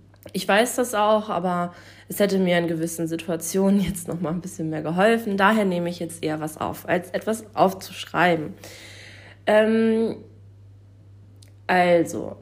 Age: 20-39